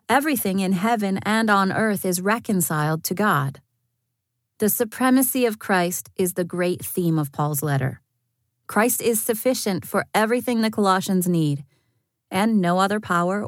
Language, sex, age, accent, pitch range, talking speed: English, female, 30-49, American, 155-215 Hz, 145 wpm